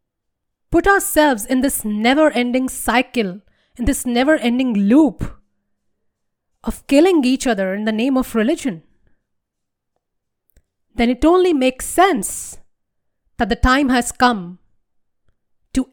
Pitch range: 205-270 Hz